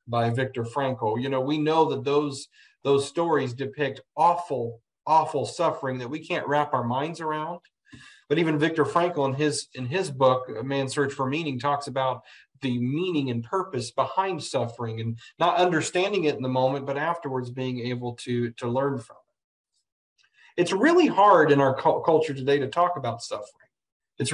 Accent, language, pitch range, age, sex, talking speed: American, English, 125-155 Hz, 40-59, male, 180 wpm